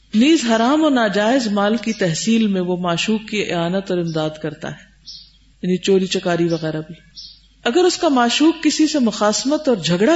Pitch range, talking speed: 175-250 Hz, 175 wpm